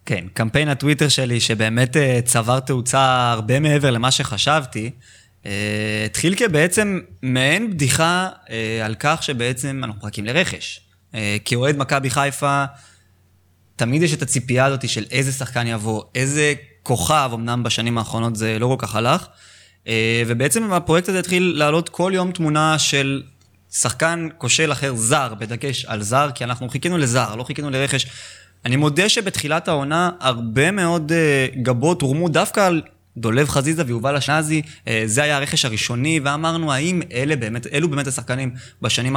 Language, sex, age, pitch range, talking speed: Hebrew, male, 20-39, 115-155 Hz, 145 wpm